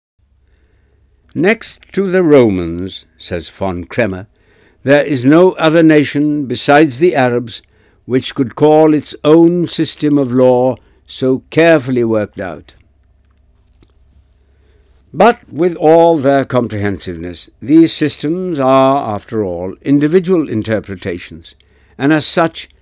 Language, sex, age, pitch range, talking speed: Urdu, male, 60-79, 105-150 Hz, 110 wpm